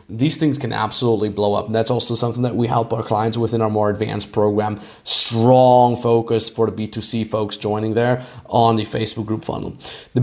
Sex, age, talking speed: male, 30-49, 200 wpm